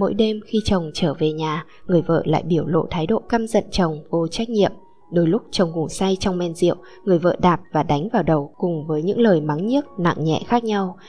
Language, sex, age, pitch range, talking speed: Vietnamese, female, 20-39, 160-200 Hz, 245 wpm